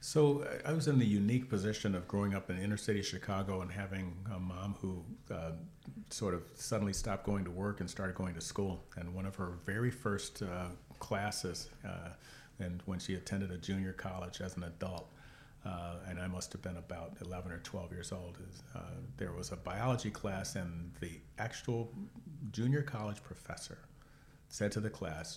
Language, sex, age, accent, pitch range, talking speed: English, male, 40-59, American, 90-115 Hz, 185 wpm